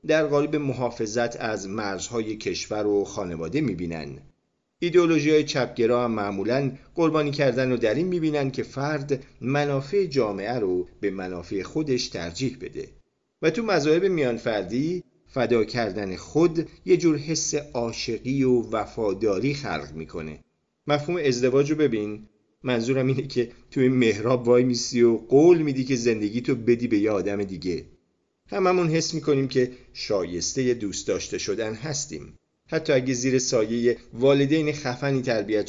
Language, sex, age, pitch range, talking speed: Persian, male, 40-59, 105-140 Hz, 135 wpm